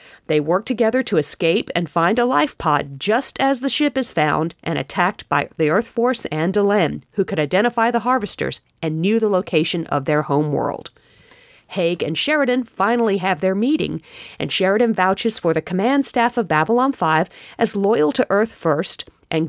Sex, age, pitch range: female, 40-59, 165-230 Hz